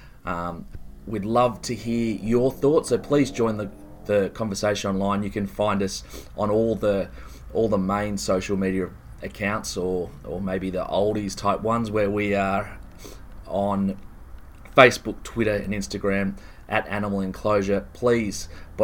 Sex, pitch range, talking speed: male, 95-110 Hz, 150 wpm